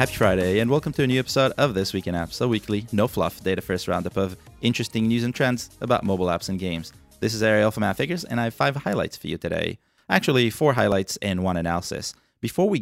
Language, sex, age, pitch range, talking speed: English, male, 30-49, 95-125 Hz, 230 wpm